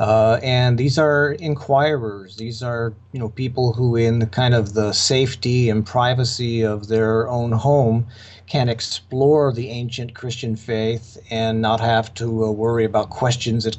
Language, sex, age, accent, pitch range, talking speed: English, male, 40-59, American, 105-125 Hz, 160 wpm